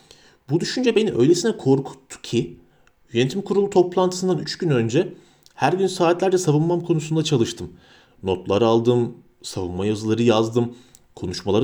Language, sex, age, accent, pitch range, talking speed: Turkish, male, 40-59, native, 115-145 Hz, 125 wpm